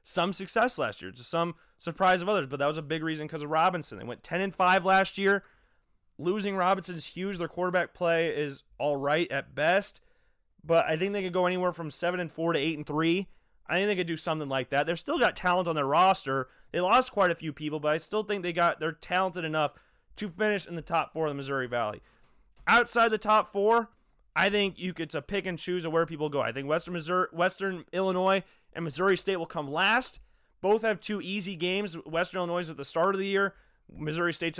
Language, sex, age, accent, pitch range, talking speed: English, male, 30-49, American, 160-195 Hz, 235 wpm